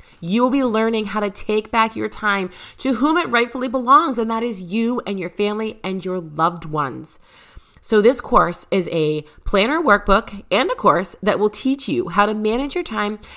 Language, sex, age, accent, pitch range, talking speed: English, female, 30-49, American, 175-230 Hz, 200 wpm